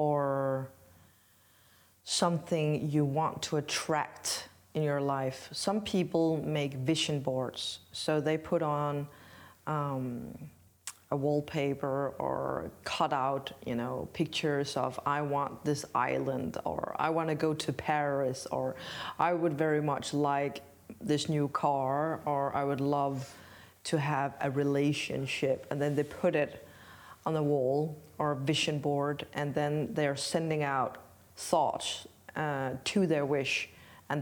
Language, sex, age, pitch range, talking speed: Danish, female, 20-39, 135-150 Hz, 140 wpm